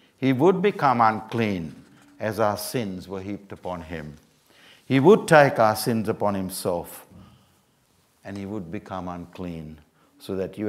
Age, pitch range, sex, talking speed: 60-79, 90-125 Hz, male, 145 wpm